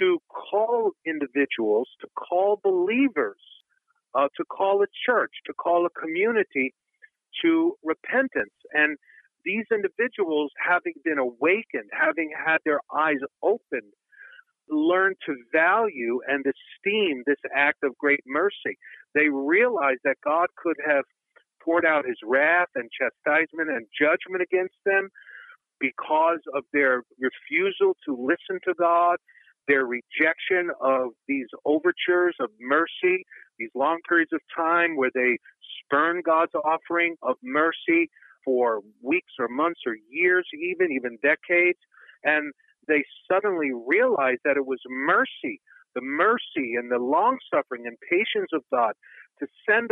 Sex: male